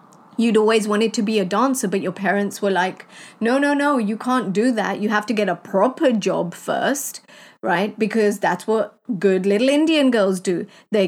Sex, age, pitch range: female, 30-49, 200-245 Hz